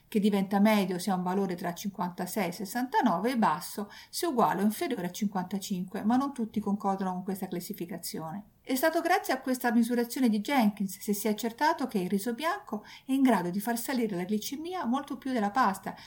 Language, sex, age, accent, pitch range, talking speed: Italian, female, 50-69, native, 190-240 Hz, 205 wpm